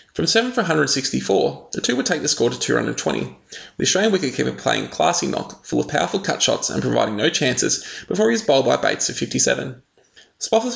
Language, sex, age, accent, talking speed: English, male, 20-39, Australian, 200 wpm